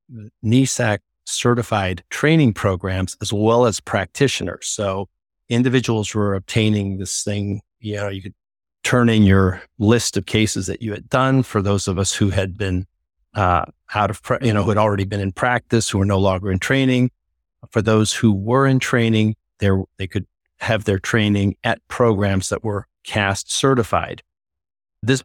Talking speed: 170 wpm